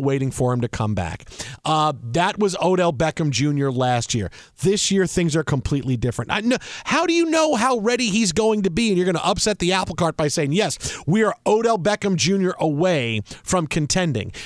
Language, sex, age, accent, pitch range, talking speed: English, male, 40-59, American, 150-215 Hz, 205 wpm